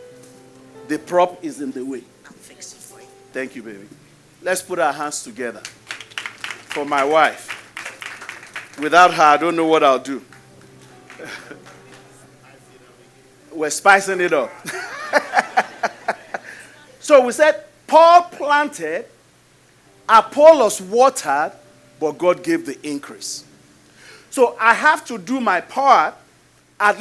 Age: 40-59